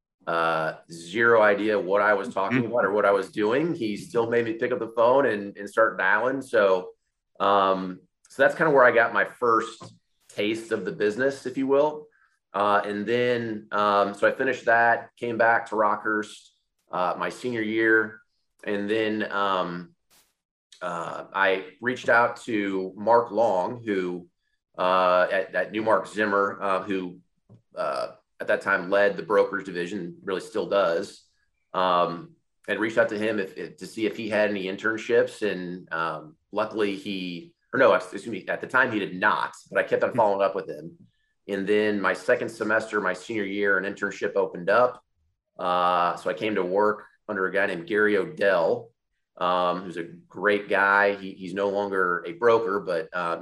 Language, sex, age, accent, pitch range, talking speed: English, male, 30-49, American, 95-110 Hz, 180 wpm